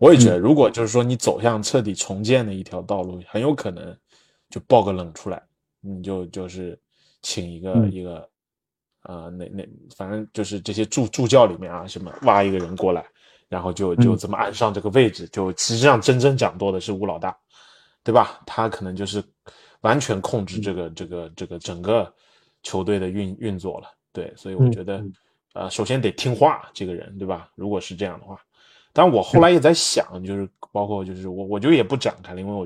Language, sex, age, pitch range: Chinese, male, 20-39, 90-115 Hz